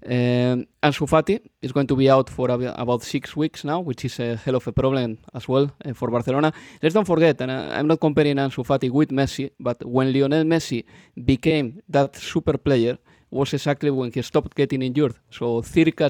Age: 20-39